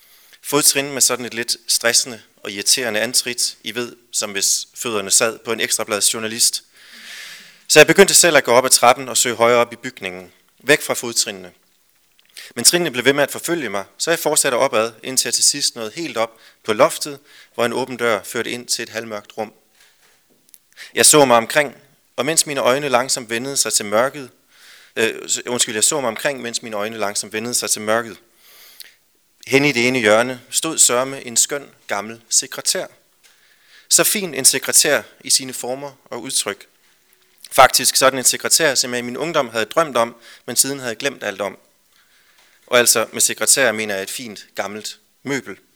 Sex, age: male, 30-49